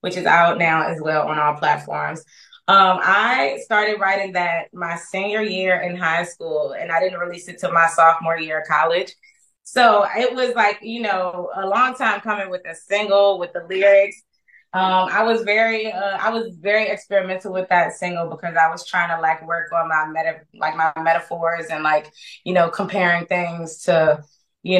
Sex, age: female, 20-39